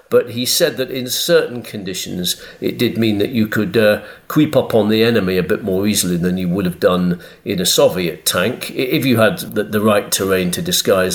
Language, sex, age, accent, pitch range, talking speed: English, male, 40-59, British, 90-130 Hz, 220 wpm